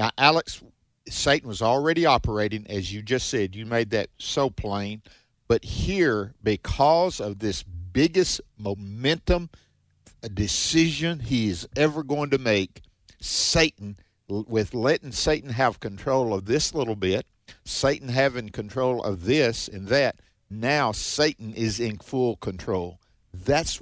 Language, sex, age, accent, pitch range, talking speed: English, male, 50-69, American, 105-135 Hz, 135 wpm